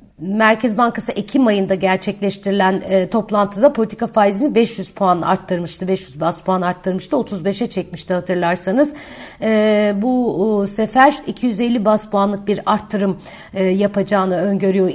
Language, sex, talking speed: Turkish, female, 125 wpm